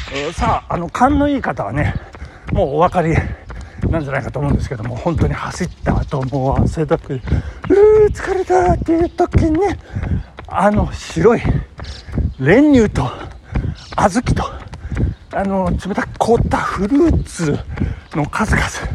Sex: male